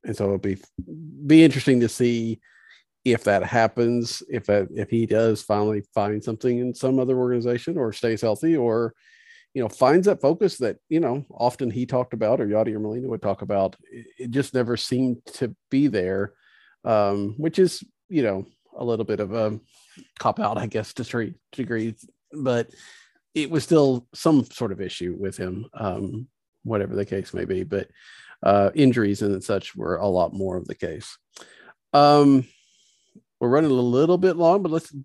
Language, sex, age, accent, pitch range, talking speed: English, male, 40-59, American, 110-135 Hz, 185 wpm